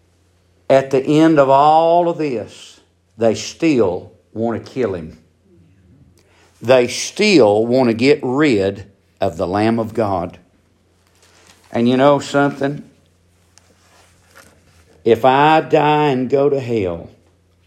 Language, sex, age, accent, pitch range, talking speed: English, male, 60-79, American, 90-135 Hz, 120 wpm